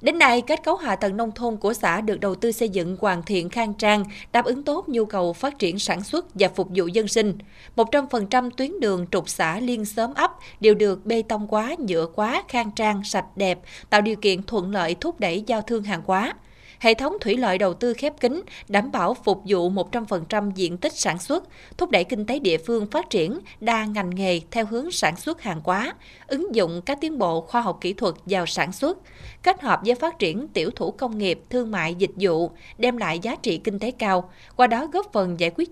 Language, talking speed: Vietnamese, 230 wpm